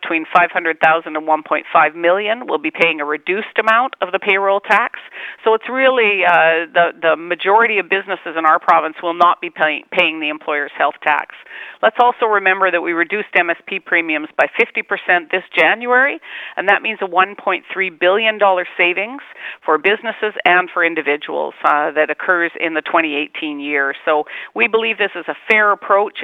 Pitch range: 165-200 Hz